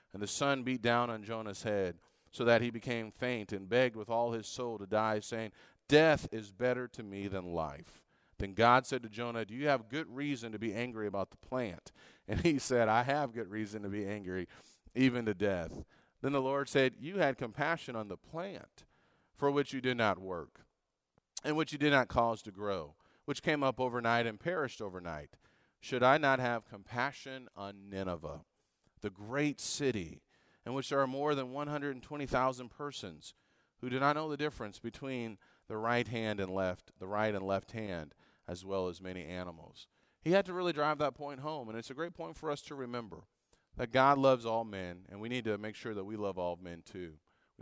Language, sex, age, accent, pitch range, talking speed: English, male, 40-59, American, 105-135 Hz, 205 wpm